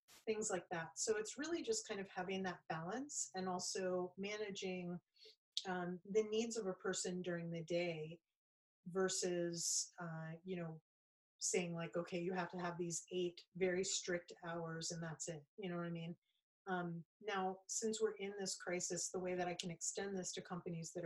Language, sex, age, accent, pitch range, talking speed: English, female, 30-49, American, 175-215 Hz, 185 wpm